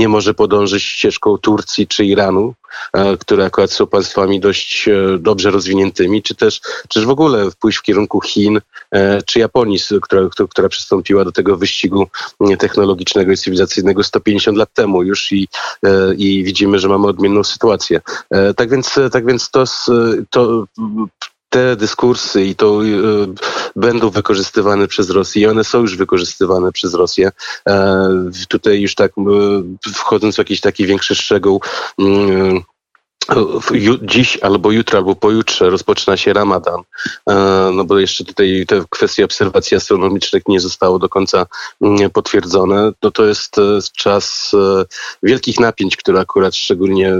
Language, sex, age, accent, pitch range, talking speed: Polish, male, 30-49, native, 95-105 Hz, 140 wpm